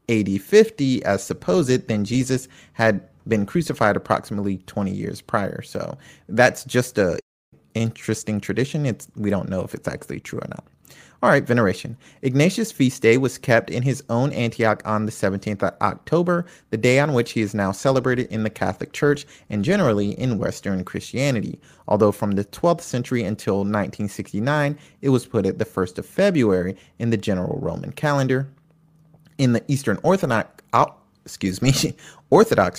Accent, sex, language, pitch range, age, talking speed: American, male, English, 100-135 Hz, 30-49, 165 wpm